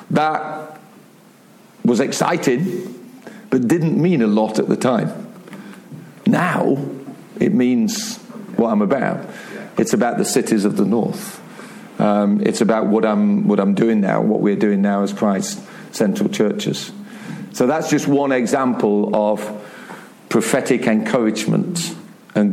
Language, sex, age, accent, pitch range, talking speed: English, male, 50-69, British, 115-165 Hz, 135 wpm